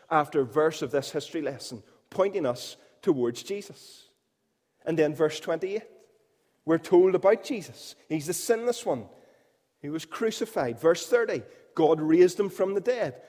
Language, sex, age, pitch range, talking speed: English, male, 30-49, 170-235 Hz, 155 wpm